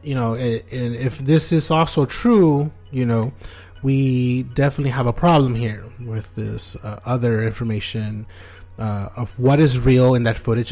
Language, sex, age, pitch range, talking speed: English, male, 30-49, 105-140 Hz, 160 wpm